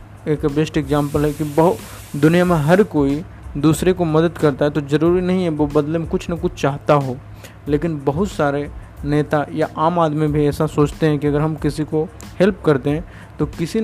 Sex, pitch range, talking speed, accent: male, 140-165 Hz, 210 wpm, native